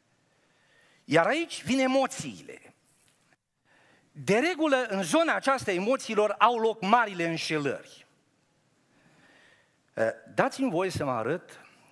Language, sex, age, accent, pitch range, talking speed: Romanian, male, 50-69, native, 125-210 Hz, 95 wpm